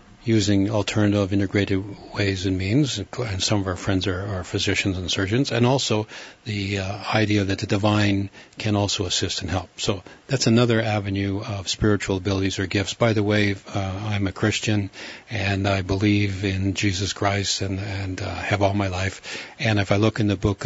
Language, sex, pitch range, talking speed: English, male, 100-115 Hz, 190 wpm